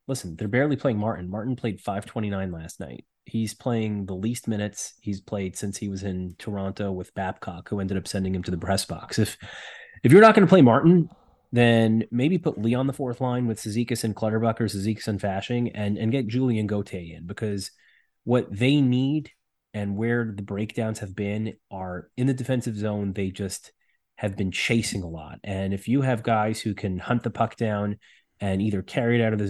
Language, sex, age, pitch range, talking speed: English, male, 30-49, 95-115 Hz, 210 wpm